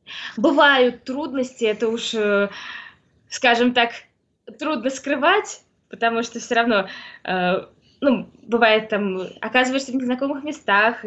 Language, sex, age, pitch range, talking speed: Russian, female, 20-39, 225-265 Hz, 105 wpm